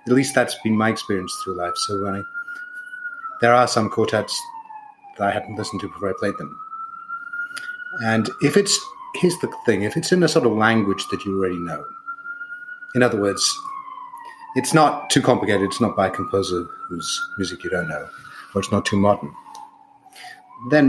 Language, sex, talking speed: English, male, 180 wpm